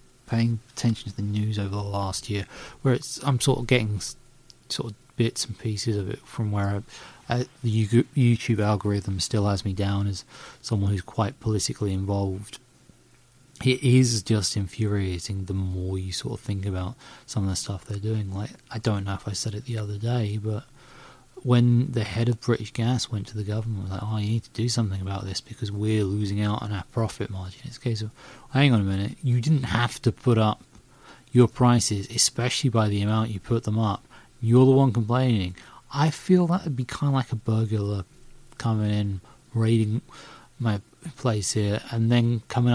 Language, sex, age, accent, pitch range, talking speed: English, male, 30-49, British, 105-125 Hz, 200 wpm